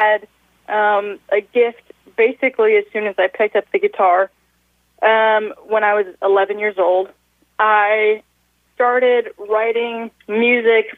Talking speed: 130 wpm